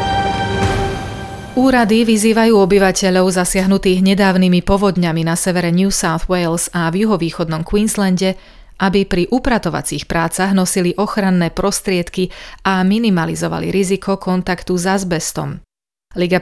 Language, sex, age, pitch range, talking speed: Slovak, female, 30-49, 170-200 Hz, 105 wpm